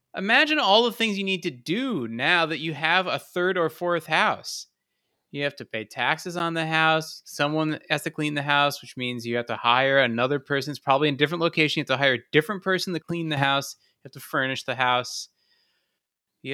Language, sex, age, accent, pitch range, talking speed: English, male, 30-49, American, 125-165 Hz, 230 wpm